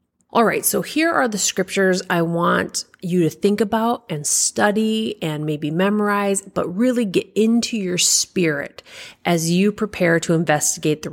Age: 30-49